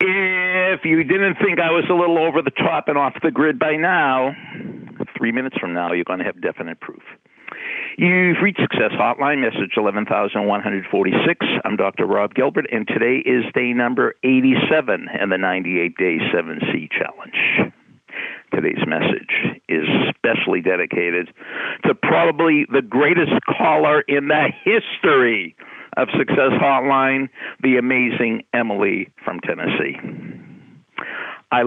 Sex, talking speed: male, 135 wpm